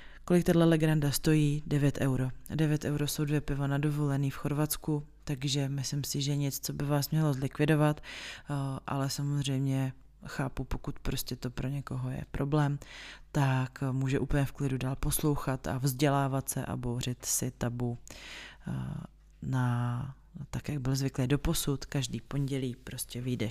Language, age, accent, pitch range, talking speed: Czech, 30-49, native, 125-145 Hz, 150 wpm